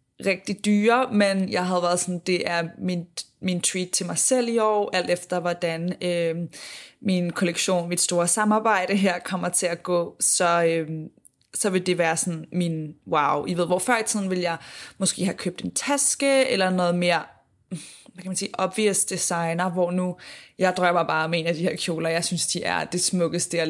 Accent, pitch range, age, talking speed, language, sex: native, 170-195 Hz, 20-39, 205 wpm, Danish, female